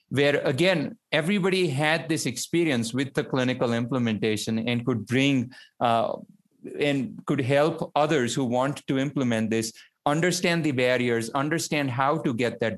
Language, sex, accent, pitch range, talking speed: English, male, Indian, 120-160 Hz, 145 wpm